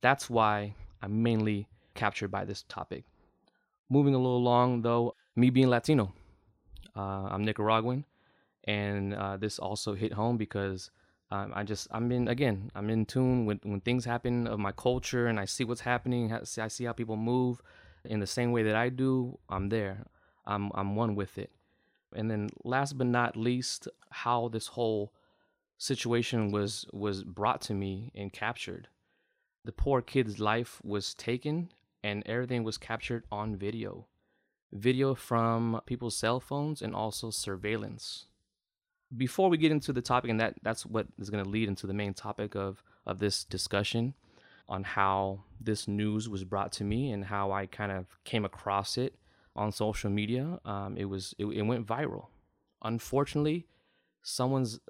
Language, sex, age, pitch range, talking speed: English, male, 20-39, 100-120 Hz, 170 wpm